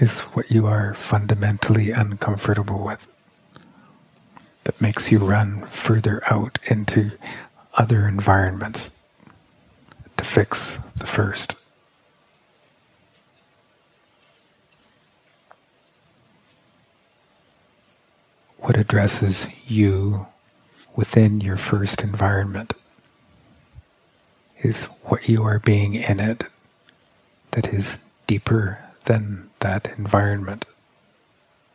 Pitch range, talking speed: 100-115 Hz, 75 wpm